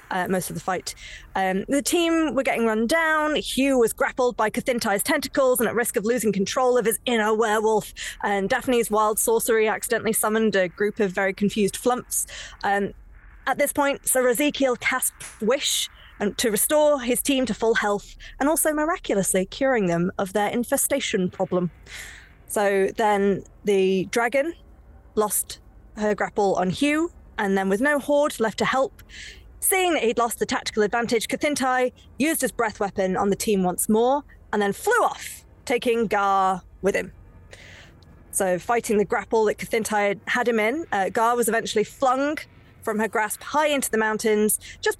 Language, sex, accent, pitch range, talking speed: English, female, British, 195-255 Hz, 170 wpm